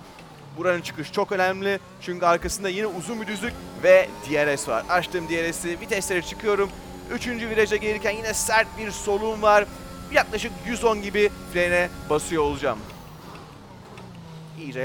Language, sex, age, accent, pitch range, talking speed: Turkish, male, 30-49, native, 135-200 Hz, 130 wpm